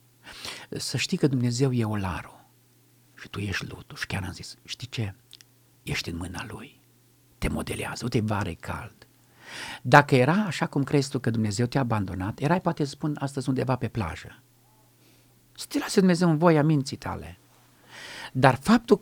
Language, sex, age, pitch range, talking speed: Romanian, male, 50-69, 120-170 Hz, 165 wpm